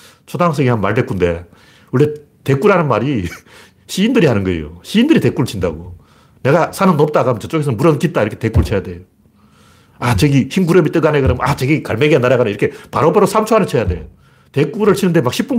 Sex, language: male, Korean